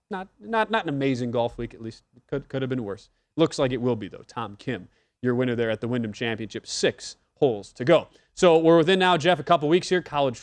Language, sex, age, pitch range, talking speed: English, male, 20-39, 125-160 Hz, 245 wpm